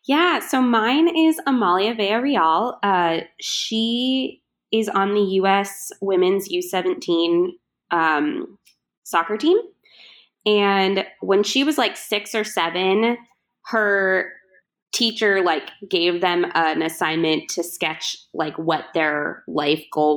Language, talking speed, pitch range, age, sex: English, 120 wpm, 160-210 Hz, 20-39, female